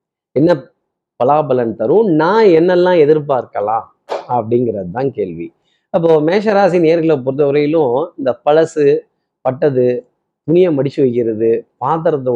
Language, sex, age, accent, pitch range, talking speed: Tamil, male, 30-49, native, 130-185 Hz, 100 wpm